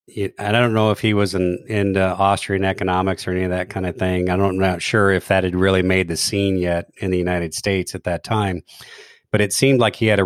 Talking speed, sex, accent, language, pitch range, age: 255 wpm, male, American, English, 90-105 Hz, 40-59